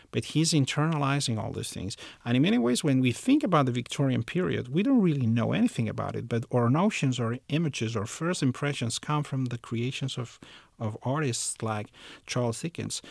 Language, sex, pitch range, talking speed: English, male, 110-135 Hz, 190 wpm